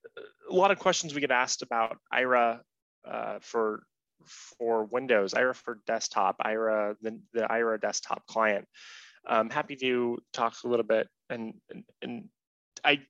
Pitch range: 105-130 Hz